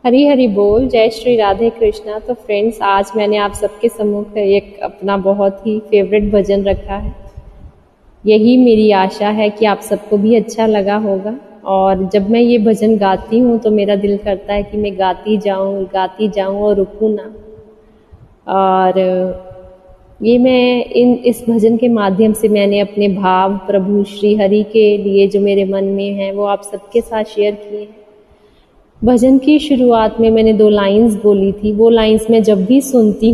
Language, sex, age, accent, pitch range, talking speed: Hindi, female, 20-39, native, 200-225 Hz, 175 wpm